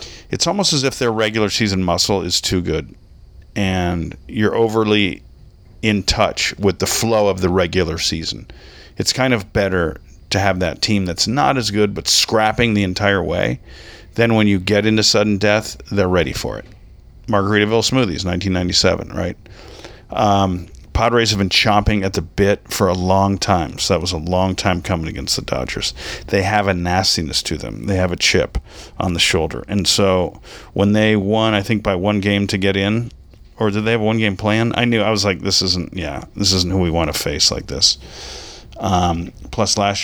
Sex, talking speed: male, 195 wpm